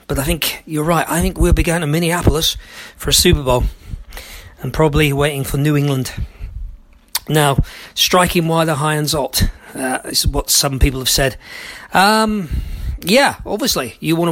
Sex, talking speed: male, 170 wpm